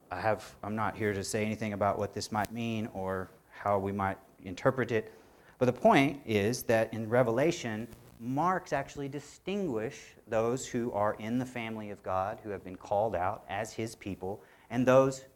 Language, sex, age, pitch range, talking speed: English, male, 40-59, 100-125 Hz, 175 wpm